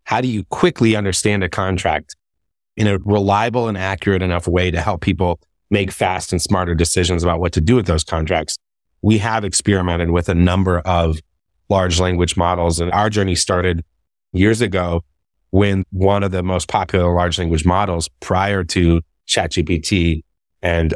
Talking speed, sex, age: 165 wpm, male, 30-49